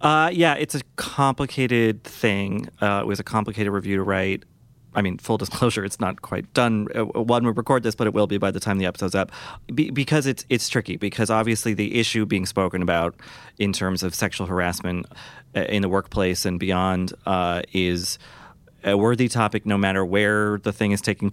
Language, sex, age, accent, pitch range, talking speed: English, male, 30-49, American, 90-110 Hz, 195 wpm